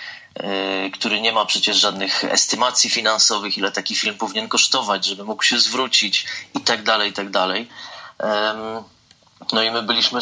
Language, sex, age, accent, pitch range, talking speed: Polish, male, 30-49, native, 100-115 Hz, 155 wpm